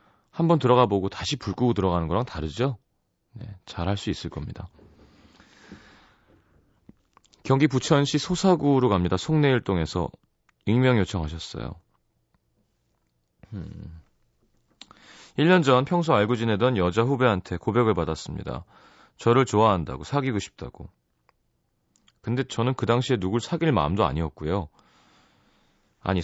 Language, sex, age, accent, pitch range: Korean, male, 30-49, native, 95-135 Hz